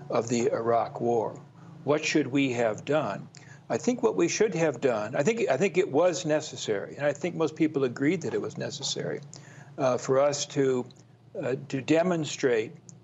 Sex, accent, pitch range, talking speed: male, American, 120-145 Hz, 185 wpm